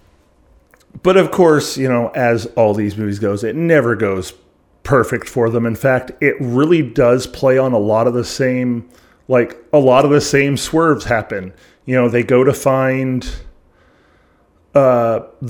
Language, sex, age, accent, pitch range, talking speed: English, male, 30-49, American, 115-140 Hz, 165 wpm